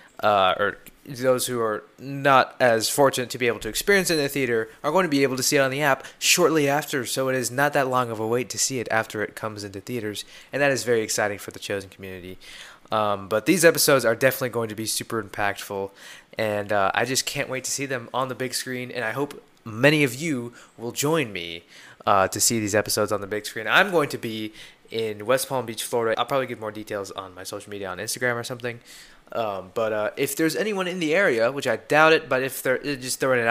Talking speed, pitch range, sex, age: 250 wpm, 110-140 Hz, male, 20-39